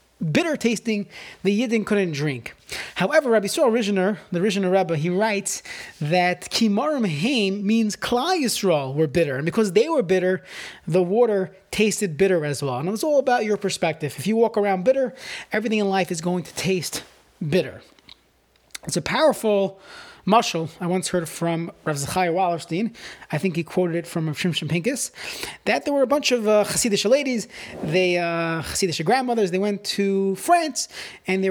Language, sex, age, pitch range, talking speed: English, male, 30-49, 170-225 Hz, 170 wpm